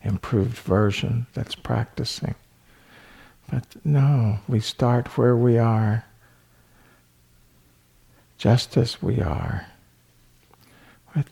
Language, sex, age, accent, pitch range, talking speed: English, male, 60-79, American, 100-145 Hz, 85 wpm